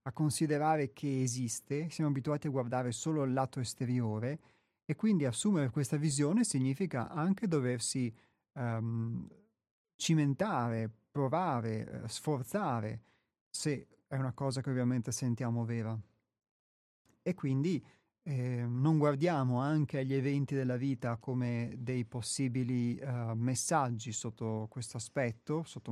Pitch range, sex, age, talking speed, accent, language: 115-140 Hz, male, 30-49, 120 wpm, native, Italian